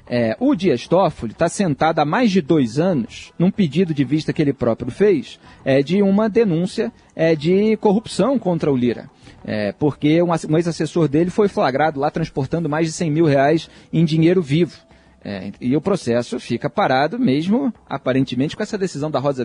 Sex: male